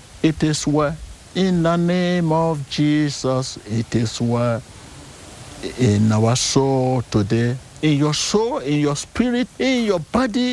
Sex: male